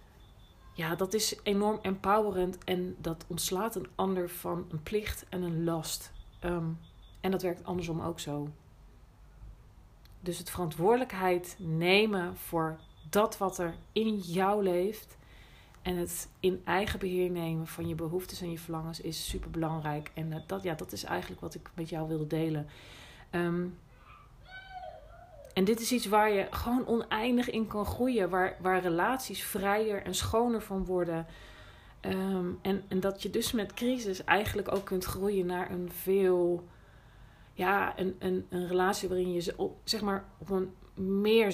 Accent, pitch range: Dutch, 165-200 Hz